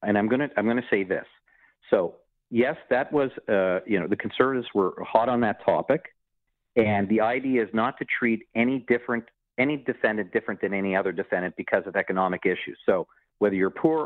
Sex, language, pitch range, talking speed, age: male, English, 100-130 Hz, 200 wpm, 50-69